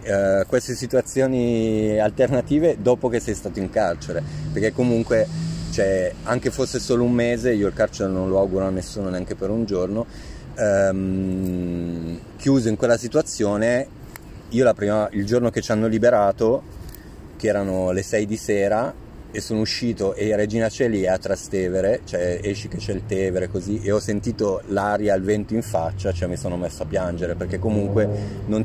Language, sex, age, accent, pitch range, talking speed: Italian, male, 30-49, native, 95-115 Hz, 175 wpm